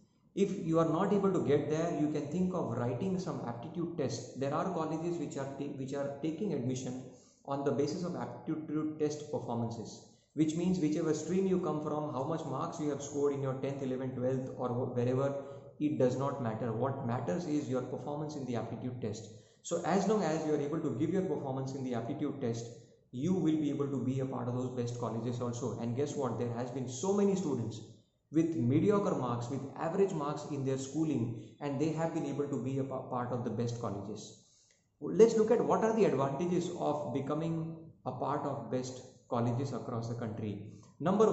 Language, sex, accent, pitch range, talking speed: English, male, Indian, 125-155 Hz, 210 wpm